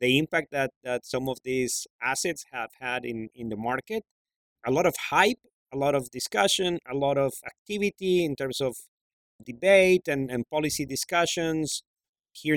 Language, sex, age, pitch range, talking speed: English, male, 30-49, 125-160 Hz, 165 wpm